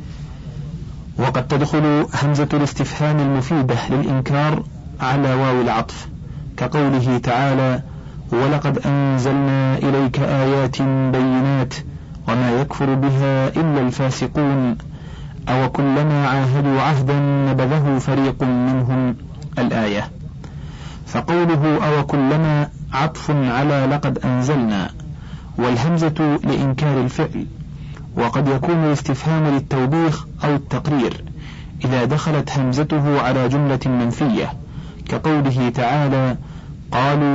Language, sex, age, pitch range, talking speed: Arabic, male, 40-59, 130-150 Hz, 85 wpm